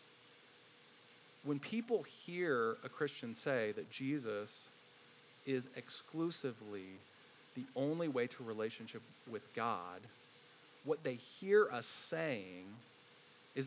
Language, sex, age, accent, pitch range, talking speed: English, male, 30-49, American, 130-185 Hz, 100 wpm